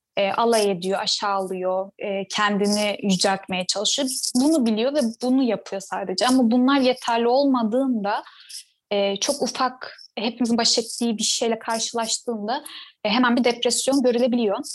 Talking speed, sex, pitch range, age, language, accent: 130 wpm, female, 215-260 Hz, 10-29, Turkish, native